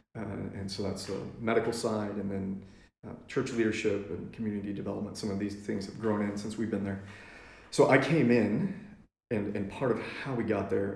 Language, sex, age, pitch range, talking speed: English, male, 30-49, 100-115 Hz, 210 wpm